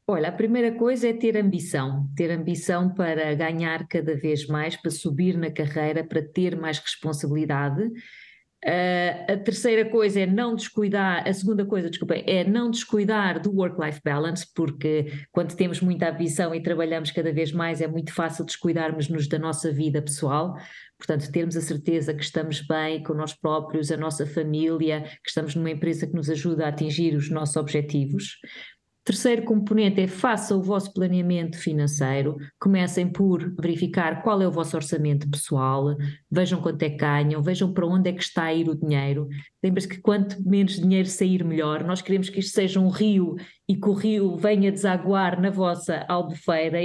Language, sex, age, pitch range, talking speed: Portuguese, female, 20-39, 155-190 Hz, 175 wpm